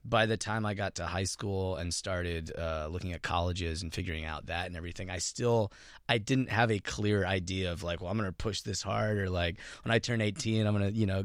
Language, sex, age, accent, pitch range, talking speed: English, male, 20-39, American, 90-110 Hz, 255 wpm